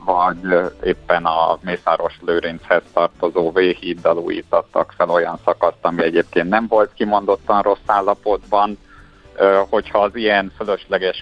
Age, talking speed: 50-69, 110 wpm